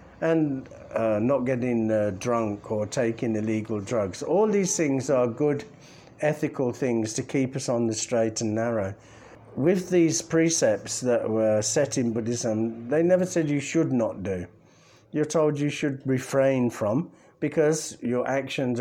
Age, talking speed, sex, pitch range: 50-69, 155 wpm, male, 115-155 Hz